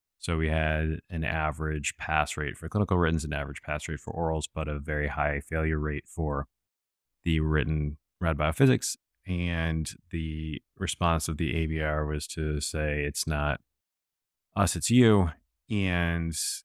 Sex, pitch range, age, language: male, 80-95 Hz, 30-49, English